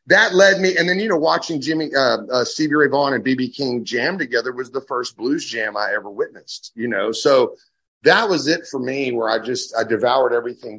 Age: 30-49